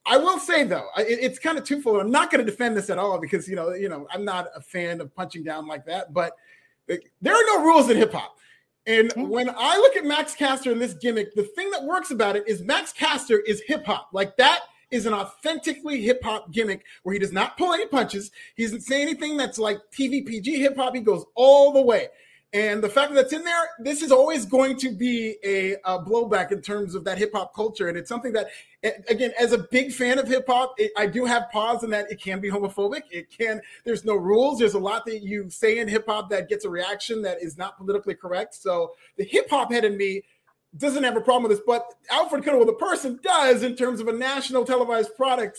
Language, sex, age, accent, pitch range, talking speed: English, male, 30-49, American, 205-270 Hz, 235 wpm